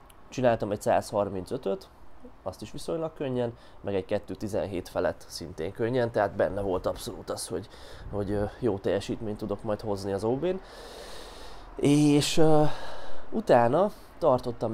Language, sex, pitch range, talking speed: Hungarian, male, 100-120 Hz, 125 wpm